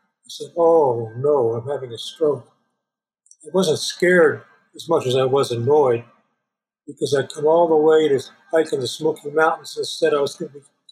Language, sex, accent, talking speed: English, male, American, 200 wpm